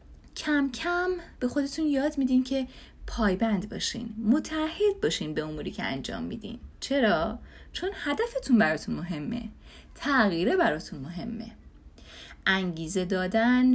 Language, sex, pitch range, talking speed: Persian, female, 185-280 Hz, 115 wpm